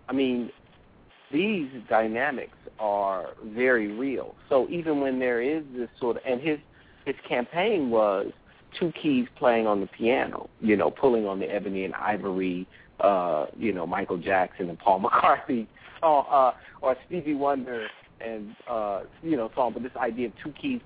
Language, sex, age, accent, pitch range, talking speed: English, male, 50-69, American, 100-130 Hz, 160 wpm